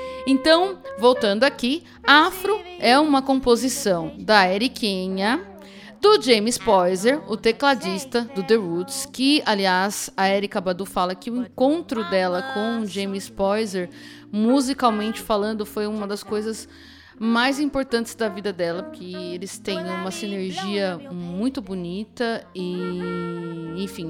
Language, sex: Portuguese, female